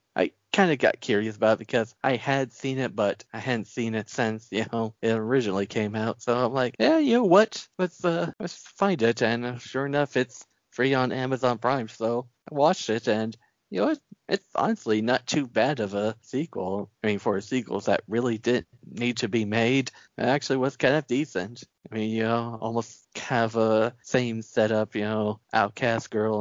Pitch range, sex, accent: 105-125 Hz, male, American